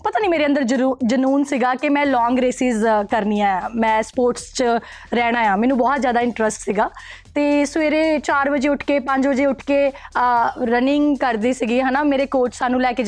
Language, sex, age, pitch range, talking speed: Punjabi, female, 20-39, 250-300 Hz, 190 wpm